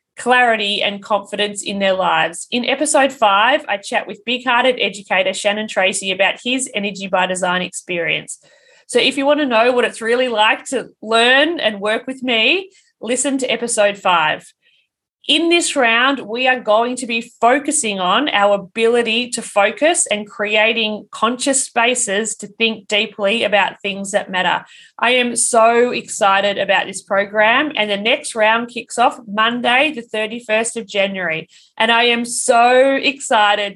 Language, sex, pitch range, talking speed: English, female, 205-255 Hz, 160 wpm